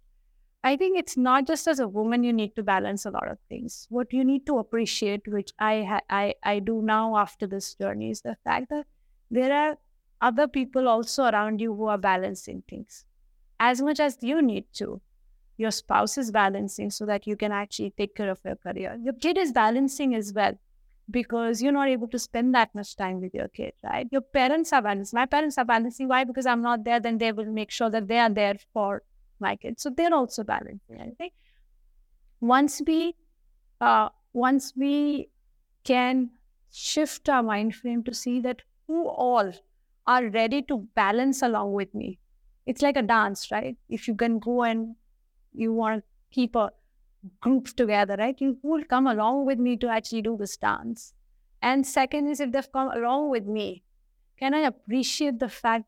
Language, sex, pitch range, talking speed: English, female, 215-270 Hz, 190 wpm